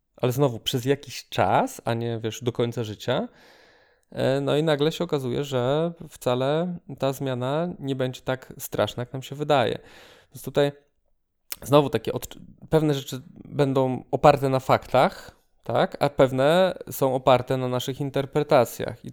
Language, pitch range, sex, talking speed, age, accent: Polish, 125-145 Hz, male, 150 wpm, 20-39, native